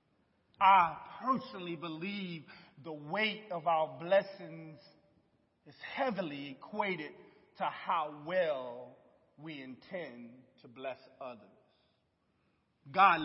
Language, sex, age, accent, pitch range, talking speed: English, male, 40-59, American, 150-200 Hz, 90 wpm